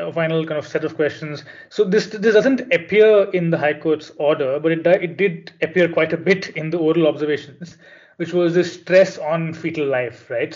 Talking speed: 210 wpm